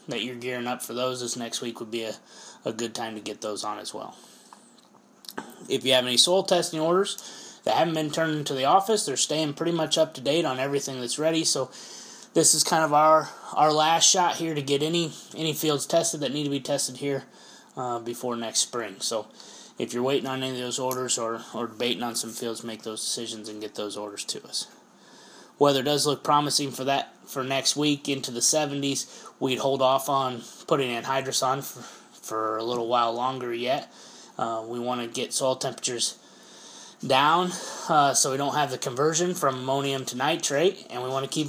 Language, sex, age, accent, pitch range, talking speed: English, male, 20-39, American, 120-150 Hz, 210 wpm